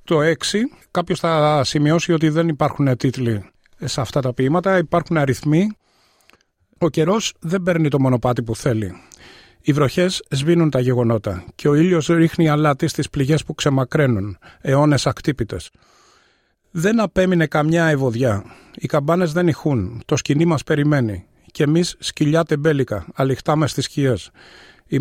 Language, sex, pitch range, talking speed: Greek, male, 130-165 Hz, 140 wpm